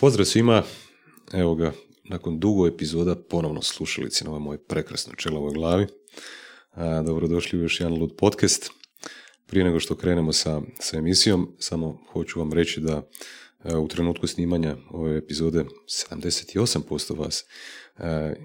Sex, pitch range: male, 80-90 Hz